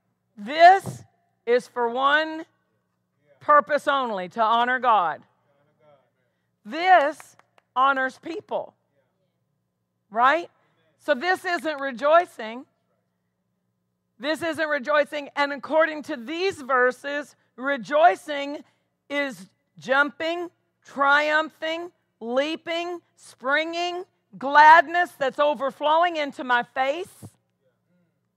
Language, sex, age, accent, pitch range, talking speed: English, female, 50-69, American, 215-325 Hz, 80 wpm